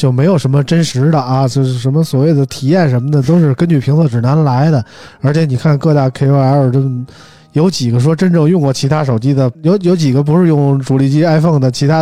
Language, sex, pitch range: Chinese, male, 120-155 Hz